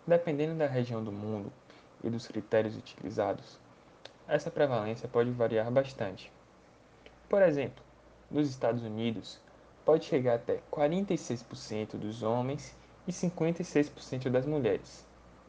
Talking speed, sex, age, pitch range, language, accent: 110 wpm, male, 10-29, 110-145 Hz, Portuguese, Brazilian